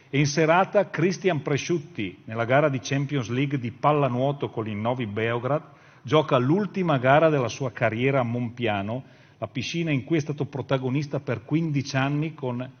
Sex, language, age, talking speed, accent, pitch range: male, Italian, 50-69, 165 wpm, native, 120-150 Hz